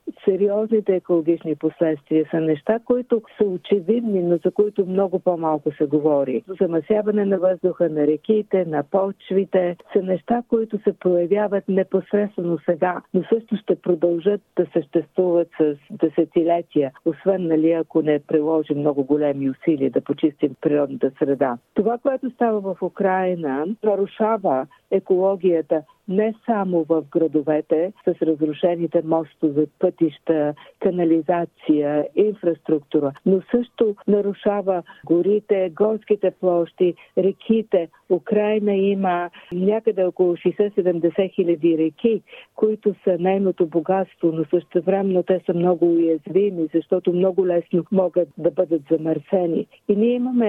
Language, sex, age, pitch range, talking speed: Bulgarian, female, 50-69, 165-205 Hz, 120 wpm